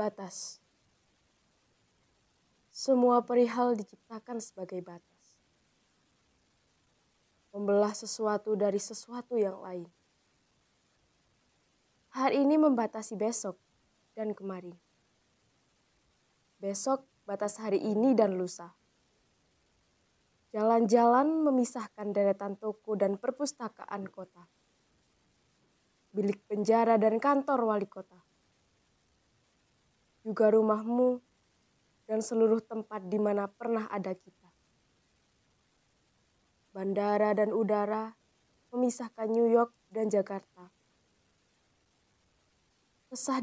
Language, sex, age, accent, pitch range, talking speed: Indonesian, female, 20-39, native, 200-240 Hz, 75 wpm